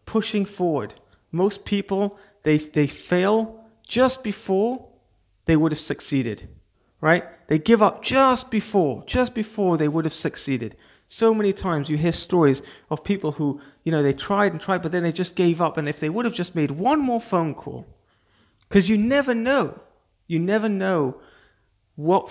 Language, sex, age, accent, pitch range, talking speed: English, male, 30-49, British, 140-200 Hz, 175 wpm